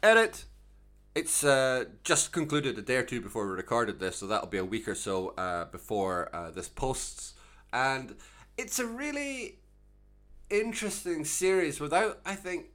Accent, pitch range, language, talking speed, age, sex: British, 105-165 Hz, English, 160 wpm, 30-49, male